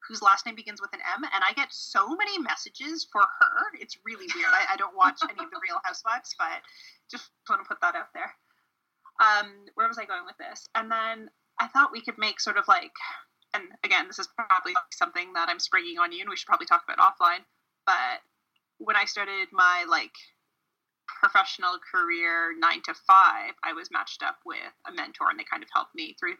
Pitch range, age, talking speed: 215-355 Hz, 20-39, 215 wpm